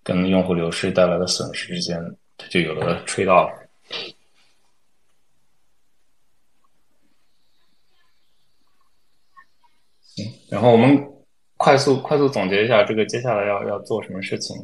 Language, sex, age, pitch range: Chinese, male, 20-39, 90-115 Hz